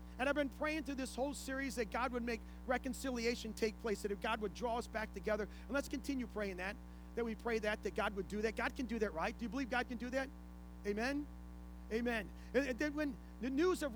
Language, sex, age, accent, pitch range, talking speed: English, male, 40-59, American, 195-270 Hz, 250 wpm